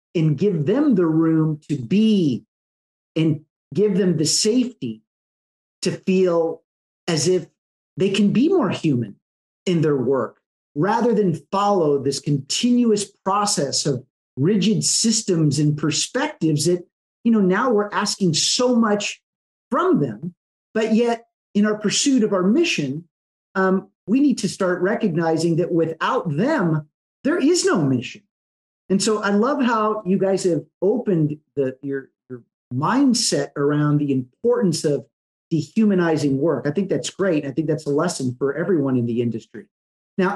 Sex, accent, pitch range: male, American, 150-205 Hz